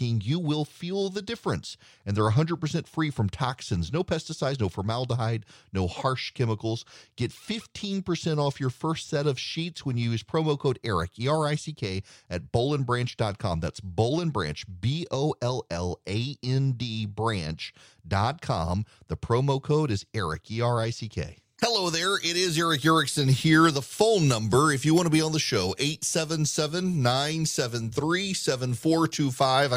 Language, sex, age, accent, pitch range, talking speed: English, male, 40-59, American, 110-150 Hz, 130 wpm